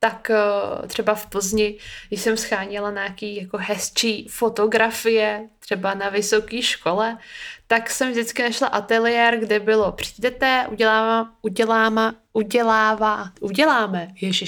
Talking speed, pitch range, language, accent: 110 wpm, 205-235 Hz, Czech, native